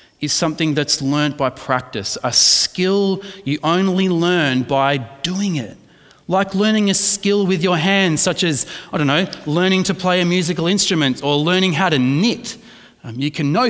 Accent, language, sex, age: Australian, English, male, 30-49